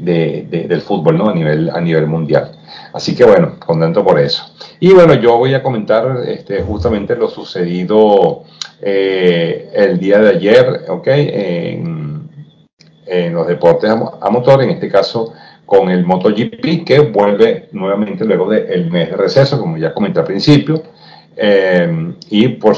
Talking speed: 165 wpm